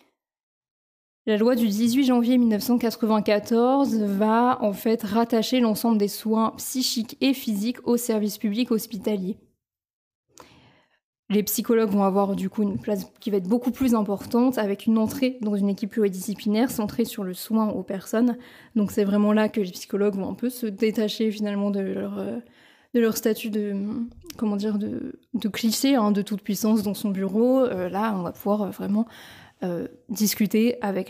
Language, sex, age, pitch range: French, female, 20-39, 205-235 Hz